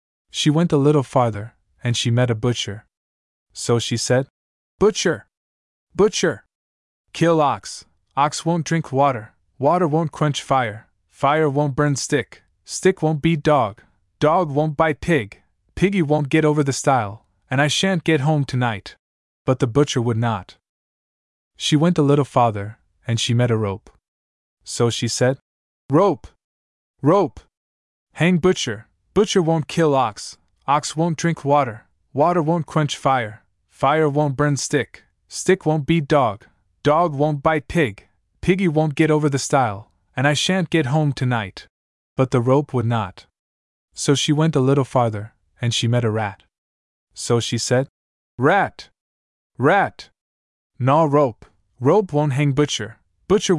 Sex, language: male, English